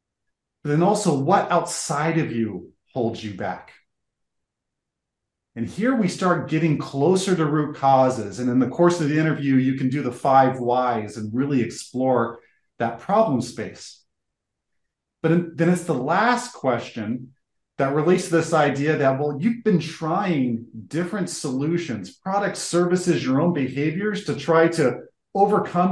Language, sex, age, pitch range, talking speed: English, male, 40-59, 130-175 Hz, 150 wpm